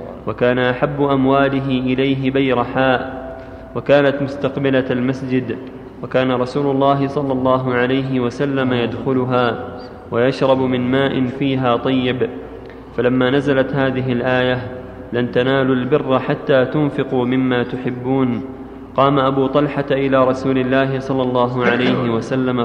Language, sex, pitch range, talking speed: Arabic, male, 125-140 Hz, 110 wpm